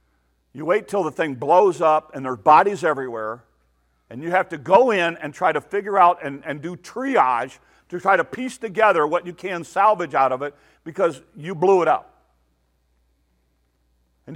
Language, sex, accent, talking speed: English, male, American, 190 wpm